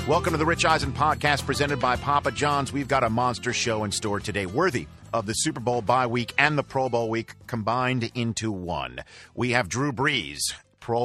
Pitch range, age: 105-135 Hz, 50-69